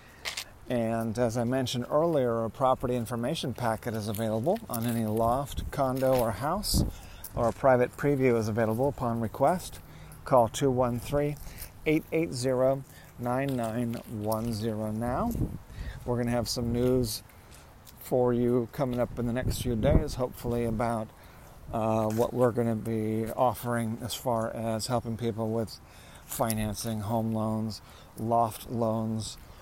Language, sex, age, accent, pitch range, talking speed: English, male, 40-59, American, 110-125 Hz, 130 wpm